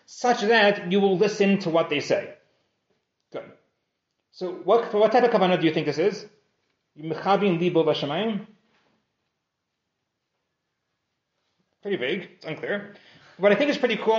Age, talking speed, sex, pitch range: 30-49, 135 wpm, male, 170-215 Hz